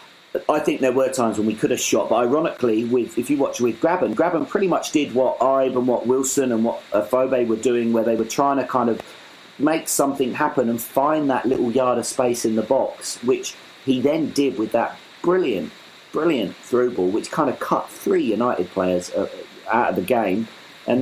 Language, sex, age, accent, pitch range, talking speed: English, male, 40-59, British, 110-140 Hz, 210 wpm